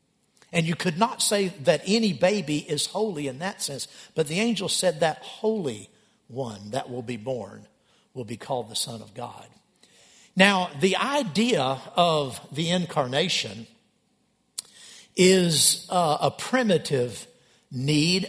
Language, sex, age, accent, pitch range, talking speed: English, male, 60-79, American, 145-200 Hz, 140 wpm